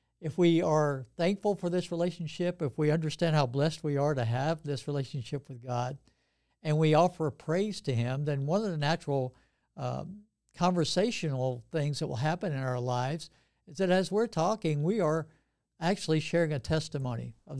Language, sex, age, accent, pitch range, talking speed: English, male, 60-79, American, 135-165 Hz, 175 wpm